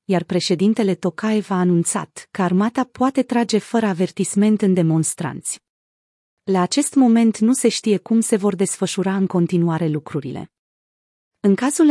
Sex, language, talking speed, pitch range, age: female, Romanian, 140 wpm, 180-225 Hz, 30-49